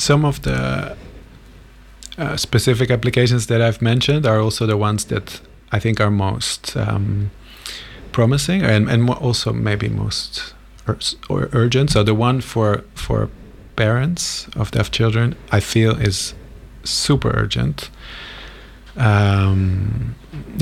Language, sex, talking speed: English, male, 125 wpm